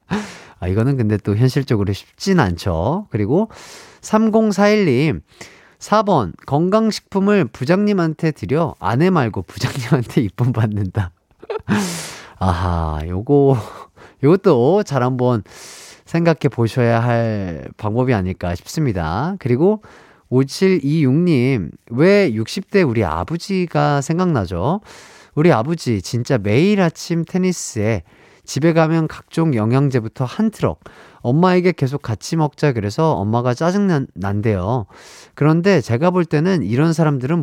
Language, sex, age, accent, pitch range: Korean, male, 30-49, native, 110-175 Hz